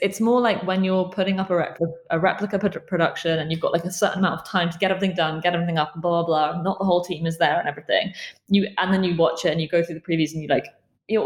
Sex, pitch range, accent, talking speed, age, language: female, 160-190 Hz, British, 300 wpm, 20-39, English